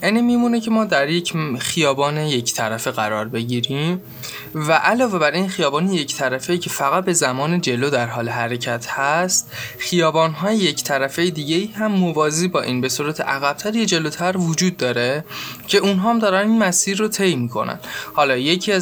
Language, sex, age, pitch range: Persian, male, 20-39, 130-180 Hz